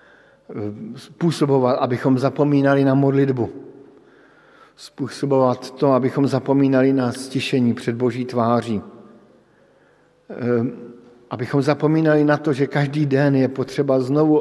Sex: male